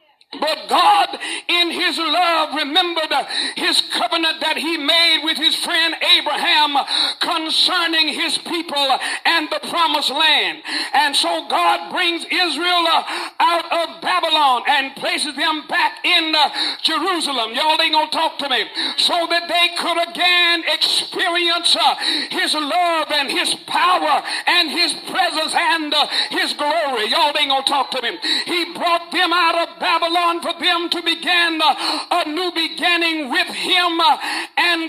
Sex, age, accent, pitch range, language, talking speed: male, 50-69, American, 310-350 Hz, English, 145 wpm